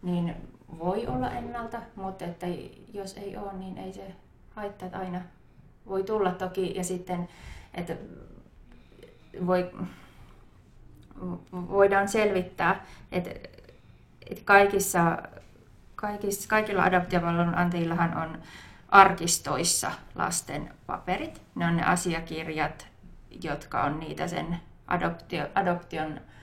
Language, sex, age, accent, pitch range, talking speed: Finnish, female, 20-39, native, 165-195 Hz, 100 wpm